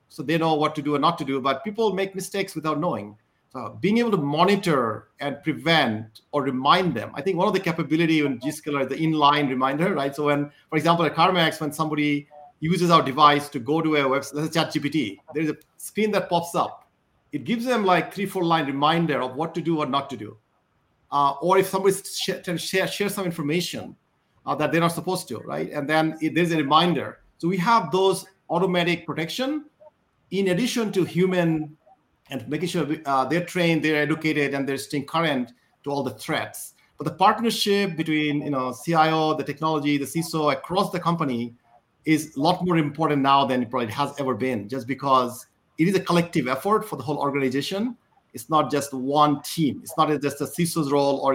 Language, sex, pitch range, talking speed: English, male, 140-175 Hz, 210 wpm